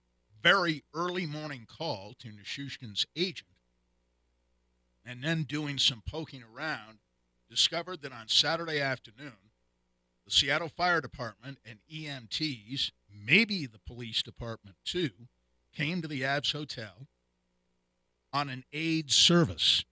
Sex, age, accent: male, 50-69, American